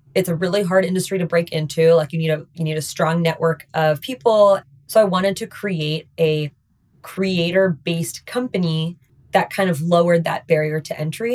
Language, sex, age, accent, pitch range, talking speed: English, female, 20-39, American, 155-185 Hz, 190 wpm